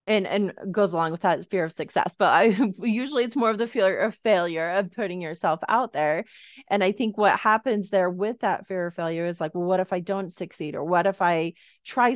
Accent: American